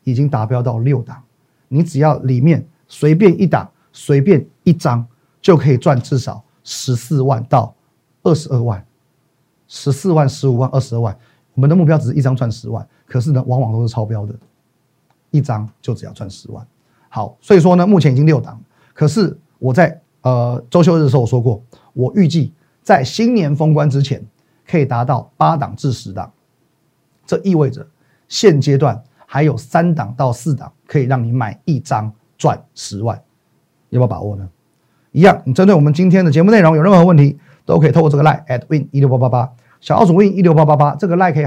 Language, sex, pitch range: Chinese, male, 125-160 Hz